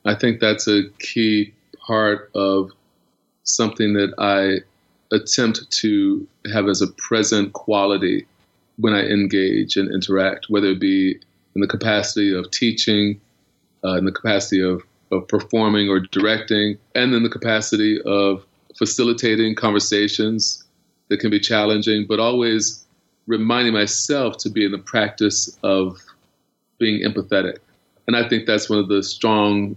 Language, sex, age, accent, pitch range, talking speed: English, male, 30-49, American, 100-115 Hz, 140 wpm